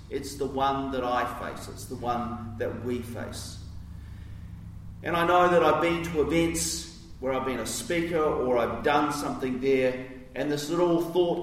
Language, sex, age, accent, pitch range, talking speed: English, male, 40-59, Australian, 115-145 Hz, 180 wpm